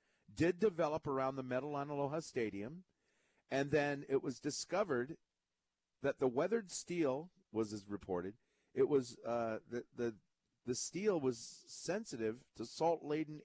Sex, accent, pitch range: male, American, 115-165 Hz